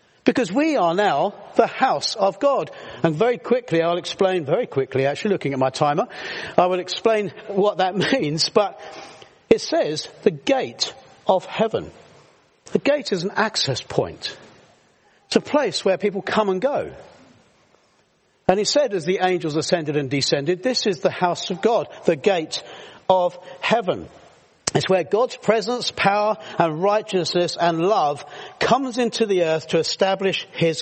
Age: 50-69